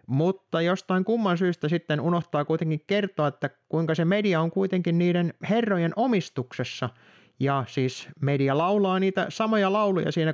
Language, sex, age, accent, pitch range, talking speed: Finnish, male, 30-49, native, 135-195 Hz, 145 wpm